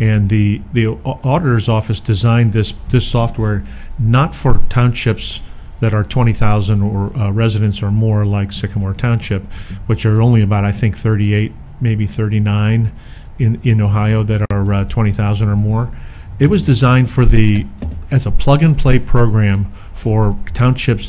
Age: 50-69